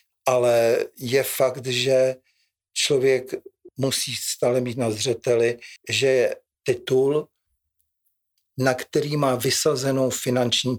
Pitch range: 115-145 Hz